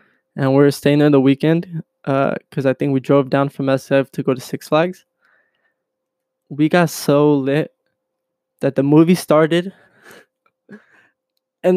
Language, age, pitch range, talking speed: English, 20-39, 140-190 Hz, 155 wpm